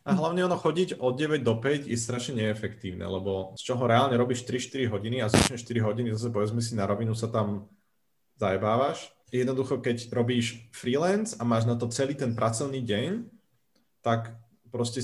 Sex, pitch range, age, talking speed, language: male, 110-125 Hz, 30-49, 175 wpm, Slovak